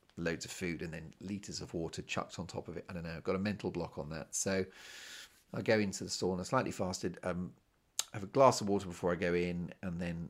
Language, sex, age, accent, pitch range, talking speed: English, male, 40-59, British, 85-100 Hz, 255 wpm